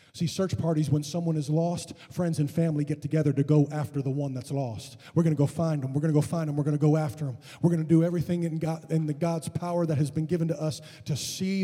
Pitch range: 130-155 Hz